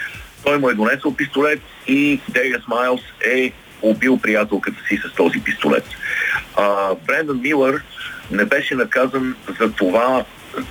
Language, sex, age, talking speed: Bulgarian, male, 50-69, 130 wpm